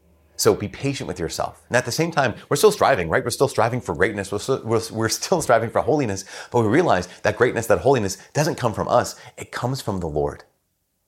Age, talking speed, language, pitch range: 30-49, 220 wpm, English, 85-115 Hz